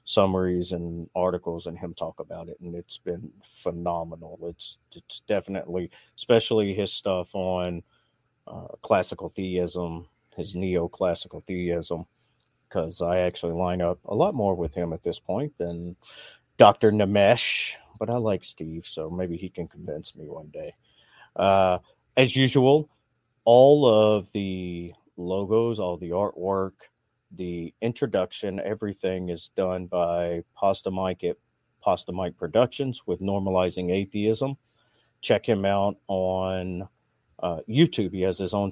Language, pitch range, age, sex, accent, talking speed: English, 85-110 Hz, 40-59, male, American, 135 wpm